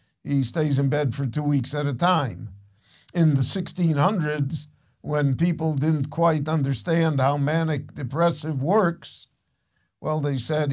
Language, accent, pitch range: English, American, 130-160 Hz